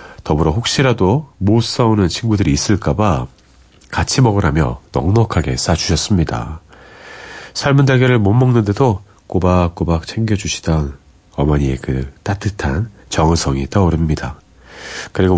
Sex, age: male, 40-59